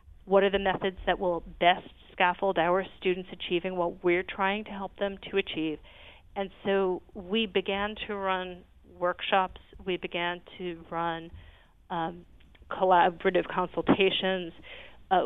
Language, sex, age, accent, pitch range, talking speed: English, female, 40-59, American, 175-200 Hz, 135 wpm